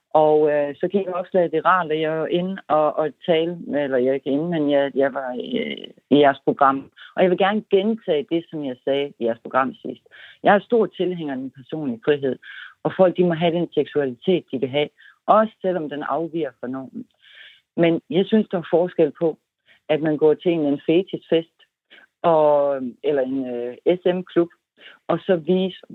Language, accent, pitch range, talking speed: Danish, native, 140-175 Hz, 205 wpm